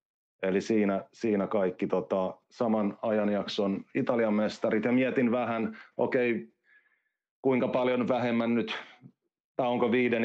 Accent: native